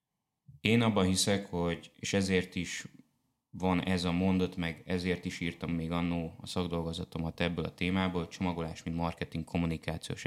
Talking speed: 160 wpm